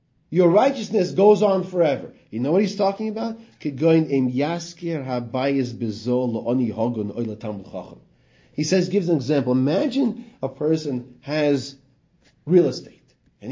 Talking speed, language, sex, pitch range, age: 100 wpm, English, male, 130-185 Hz, 30-49